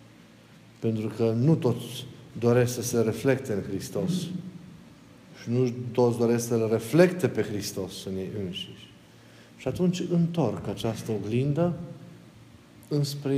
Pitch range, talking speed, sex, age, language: 110-155 Hz, 120 wpm, male, 50-69, Romanian